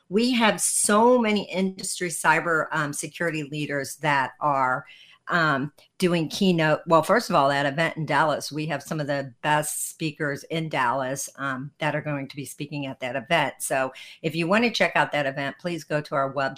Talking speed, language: 195 wpm, English